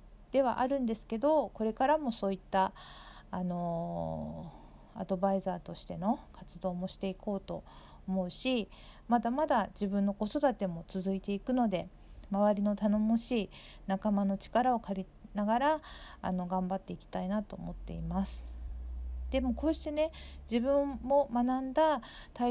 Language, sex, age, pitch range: Japanese, female, 40-59, 190-235 Hz